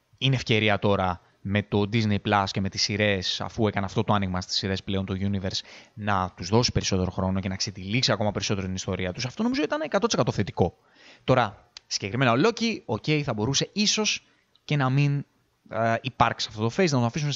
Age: 20-39